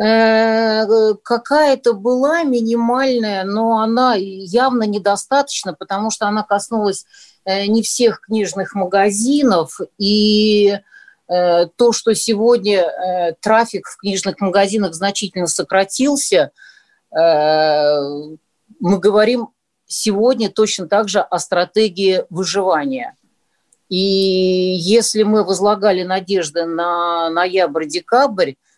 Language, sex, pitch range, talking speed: Russian, female, 175-225 Hz, 85 wpm